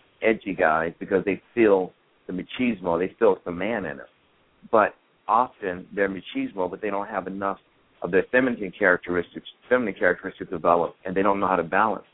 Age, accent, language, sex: 50-69, American, English, male